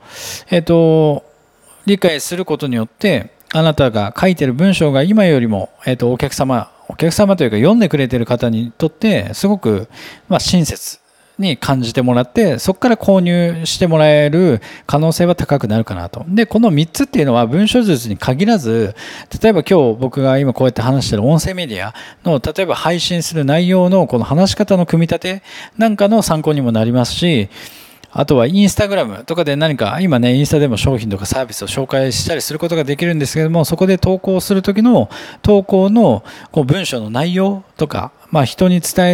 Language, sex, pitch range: Japanese, male, 125-185 Hz